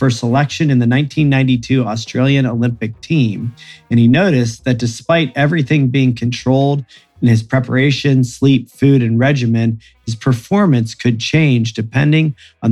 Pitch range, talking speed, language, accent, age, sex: 115-135 Hz, 135 wpm, English, American, 40-59, male